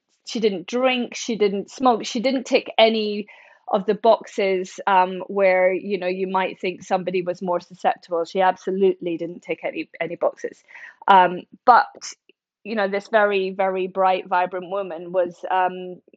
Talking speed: 160 wpm